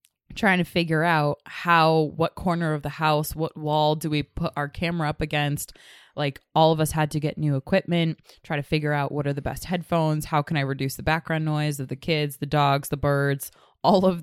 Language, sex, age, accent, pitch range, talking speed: English, female, 20-39, American, 140-165 Hz, 225 wpm